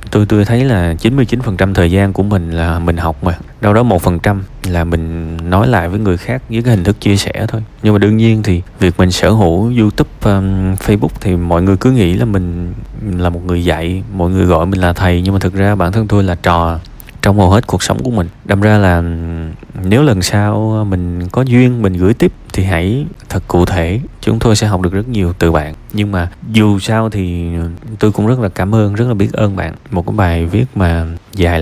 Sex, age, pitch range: male, 20-39, 90-115 Hz